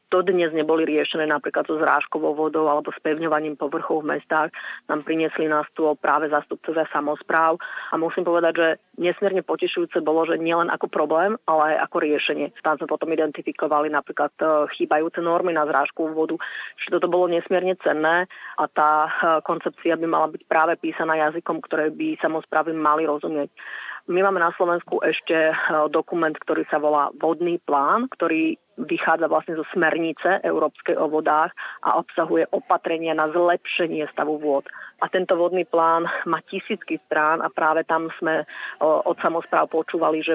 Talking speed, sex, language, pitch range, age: 155 wpm, female, Slovak, 155-175 Hz, 30-49